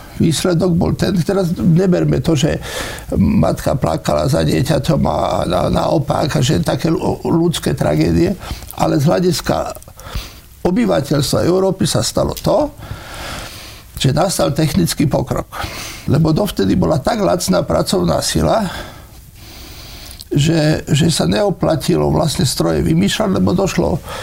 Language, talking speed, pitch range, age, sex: Slovak, 115 wpm, 120-185 Hz, 60-79, male